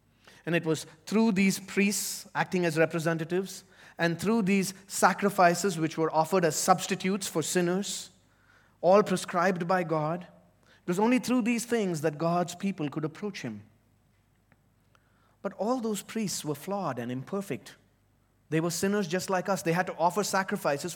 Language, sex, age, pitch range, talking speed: English, male, 30-49, 170-220 Hz, 155 wpm